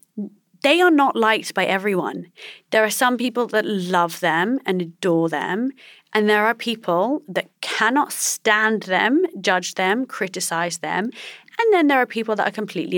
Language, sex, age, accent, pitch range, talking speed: English, female, 30-49, British, 175-210 Hz, 165 wpm